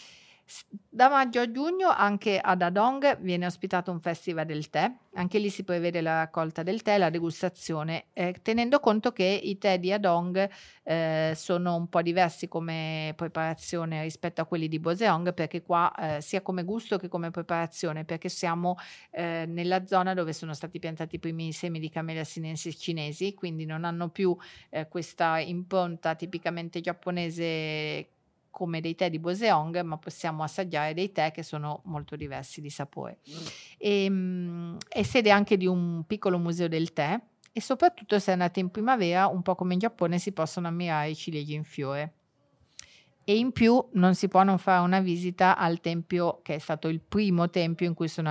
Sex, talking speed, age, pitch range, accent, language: female, 175 wpm, 40-59, 160-185 Hz, native, Italian